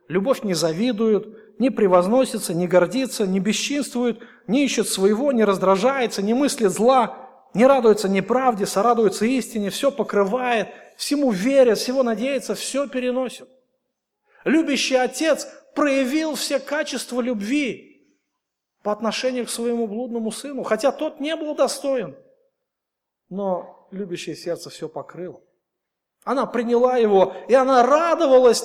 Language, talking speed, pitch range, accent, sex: Russian, 120 wpm, 220-270 Hz, native, male